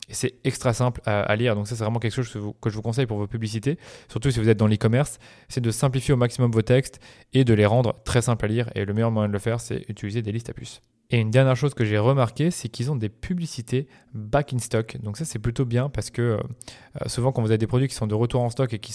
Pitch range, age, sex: 110-130 Hz, 20-39, male